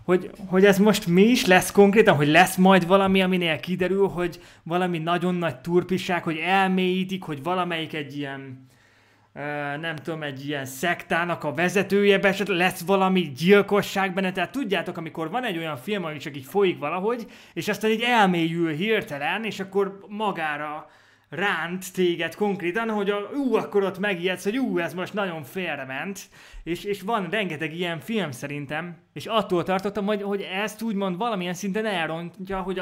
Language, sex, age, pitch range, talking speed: Hungarian, male, 20-39, 145-195 Hz, 165 wpm